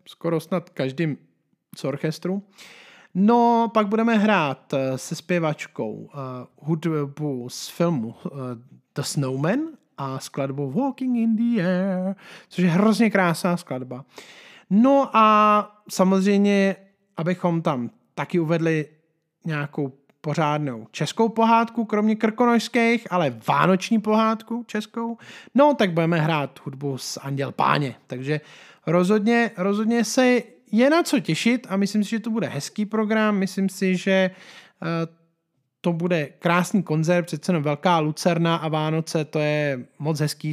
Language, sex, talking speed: Czech, male, 125 wpm